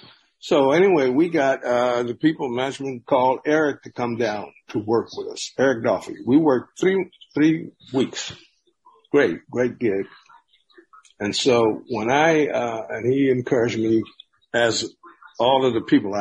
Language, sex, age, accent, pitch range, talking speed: English, male, 60-79, American, 115-150 Hz, 150 wpm